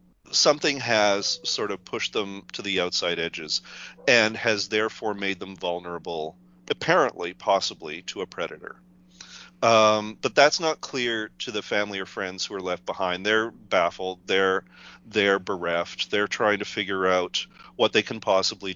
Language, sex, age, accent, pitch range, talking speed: English, male, 40-59, American, 85-110 Hz, 155 wpm